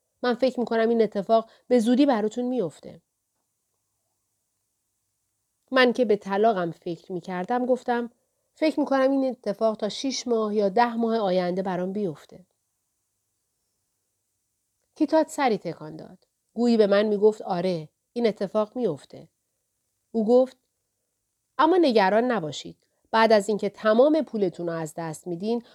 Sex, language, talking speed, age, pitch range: female, Persian, 130 wpm, 40-59, 160-245 Hz